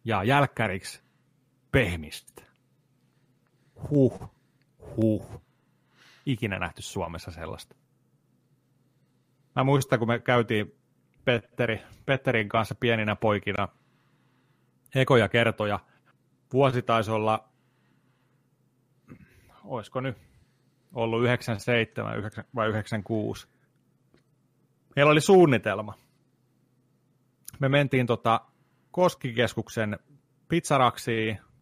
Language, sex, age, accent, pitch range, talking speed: Finnish, male, 30-49, native, 110-135 Hz, 70 wpm